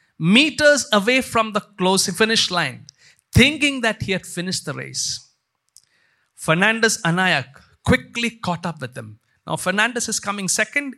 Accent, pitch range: Indian, 135-215 Hz